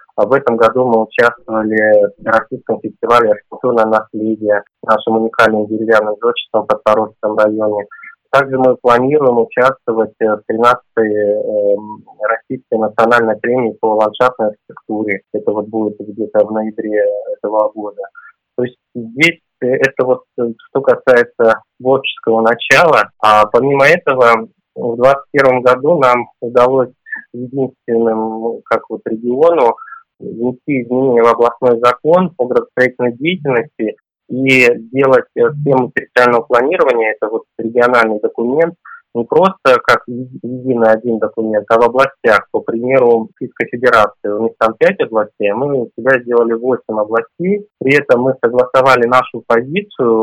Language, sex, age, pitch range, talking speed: Russian, male, 20-39, 110-130 Hz, 125 wpm